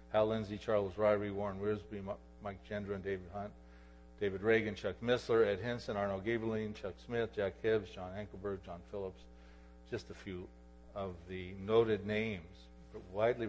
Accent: American